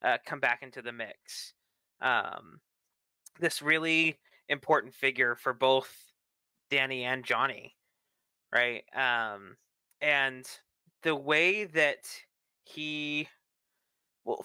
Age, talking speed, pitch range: 20-39, 100 wpm, 130-160 Hz